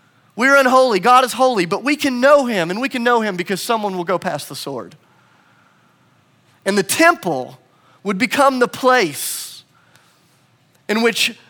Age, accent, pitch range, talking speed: 30-49, American, 155-230 Hz, 160 wpm